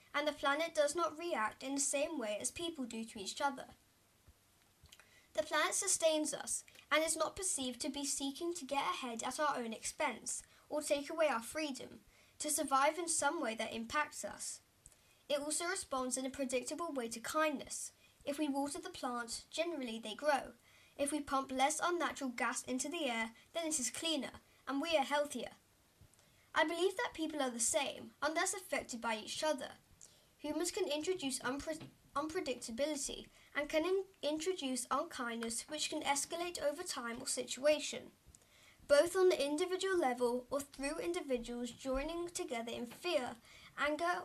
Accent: British